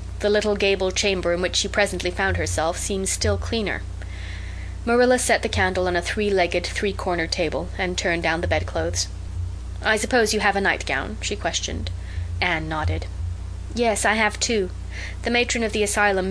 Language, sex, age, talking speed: English, female, 30-49, 170 wpm